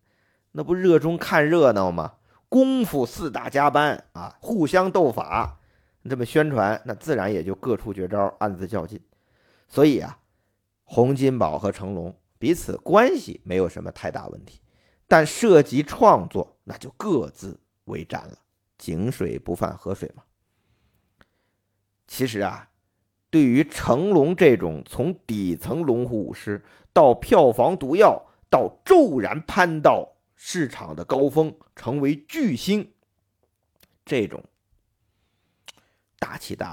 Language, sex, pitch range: Chinese, male, 100-130 Hz